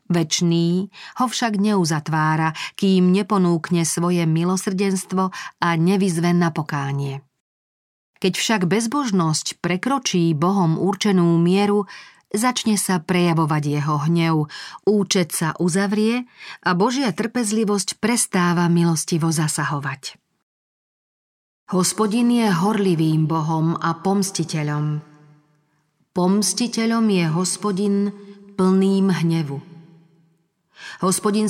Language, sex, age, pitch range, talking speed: Slovak, female, 40-59, 160-200 Hz, 85 wpm